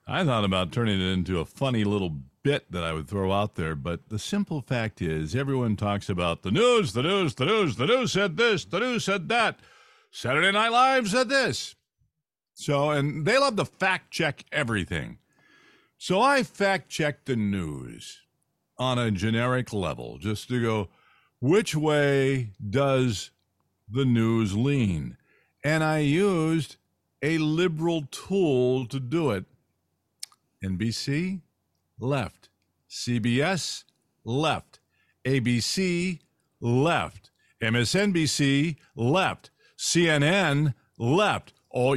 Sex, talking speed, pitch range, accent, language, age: male, 125 wpm, 115-180 Hz, American, English, 50-69